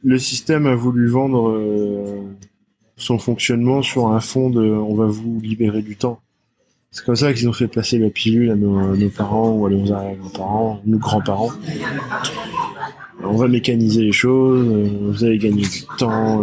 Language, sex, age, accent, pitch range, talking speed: French, male, 20-39, French, 105-125 Hz, 185 wpm